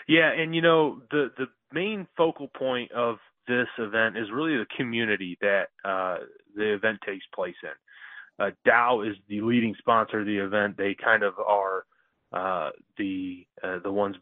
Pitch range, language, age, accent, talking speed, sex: 100-115 Hz, English, 30-49, American, 170 wpm, male